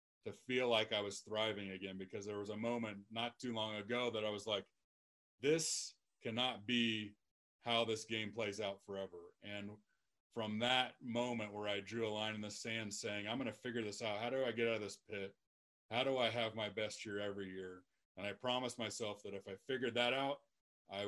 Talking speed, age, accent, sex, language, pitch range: 215 wpm, 30-49, American, male, English, 100-120 Hz